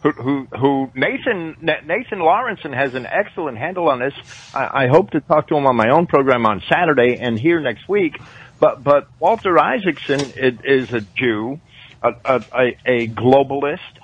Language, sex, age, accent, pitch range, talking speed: English, male, 50-69, American, 120-150 Hz, 175 wpm